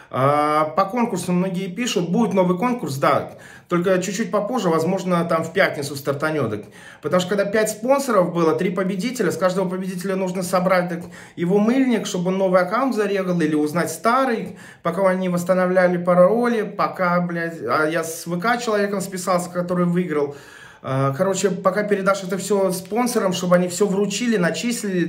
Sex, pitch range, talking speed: male, 145-200 Hz, 155 wpm